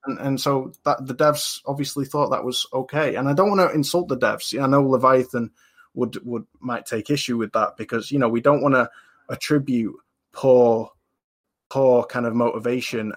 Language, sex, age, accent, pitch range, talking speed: English, male, 20-39, British, 120-150 Hz, 200 wpm